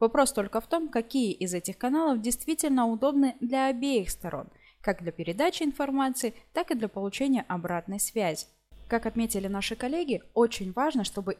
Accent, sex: native, female